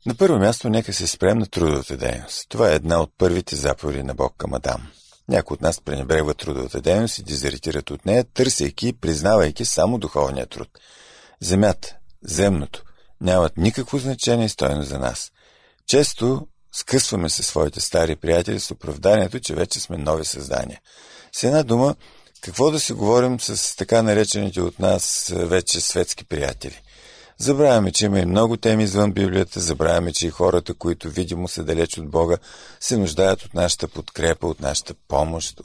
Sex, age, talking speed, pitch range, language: male, 50-69, 165 wpm, 80-115 Hz, Bulgarian